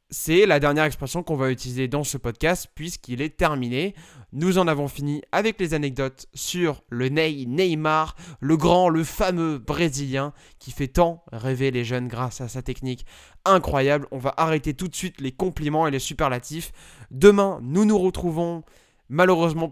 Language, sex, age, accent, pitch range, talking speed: French, male, 20-39, French, 135-170 Hz, 165 wpm